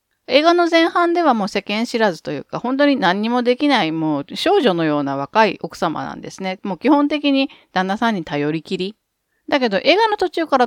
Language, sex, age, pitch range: Japanese, female, 40-59, 170-280 Hz